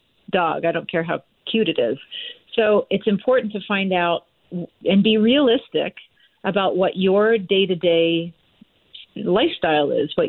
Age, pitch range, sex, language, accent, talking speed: 40-59, 175-210 Hz, female, English, American, 140 wpm